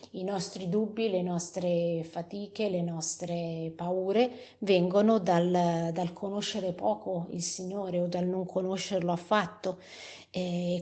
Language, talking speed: Italian, 120 wpm